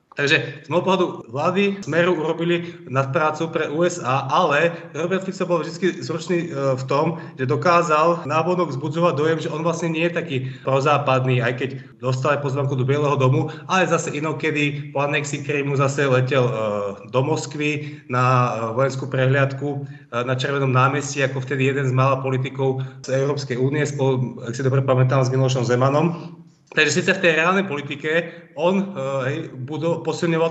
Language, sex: Czech, male